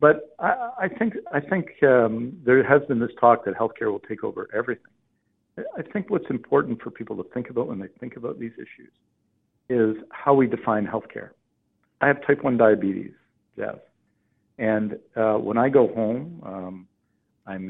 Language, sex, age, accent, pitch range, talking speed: English, male, 60-79, American, 95-115 Hz, 180 wpm